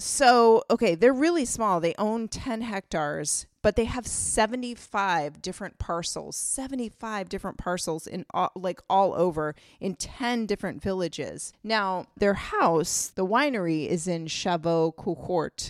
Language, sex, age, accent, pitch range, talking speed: English, female, 30-49, American, 165-210 Hz, 140 wpm